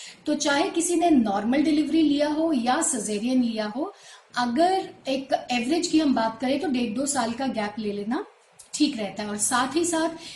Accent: native